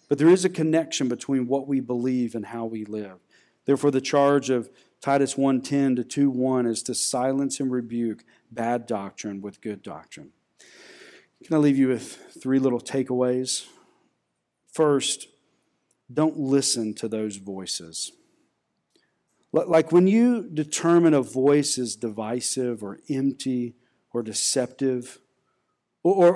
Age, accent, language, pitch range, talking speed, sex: 40-59, American, English, 120-150 Hz, 130 wpm, male